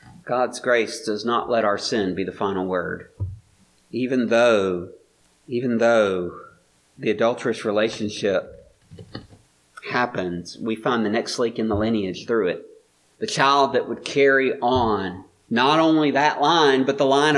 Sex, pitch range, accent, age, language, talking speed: male, 115-180 Hz, American, 40-59, English, 145 wpm